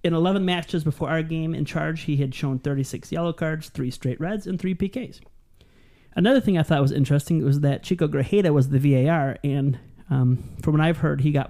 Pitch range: 130-155 Hz